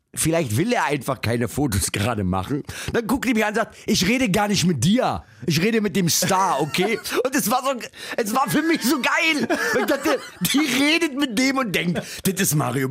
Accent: German